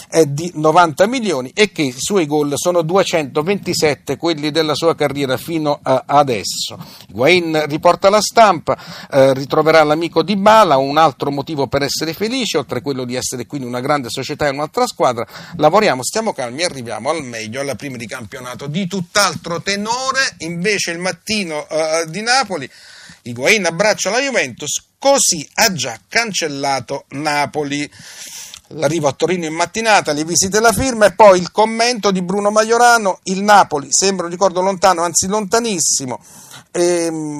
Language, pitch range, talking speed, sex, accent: Italian, 145-195 Hz, 155 wpm, male, native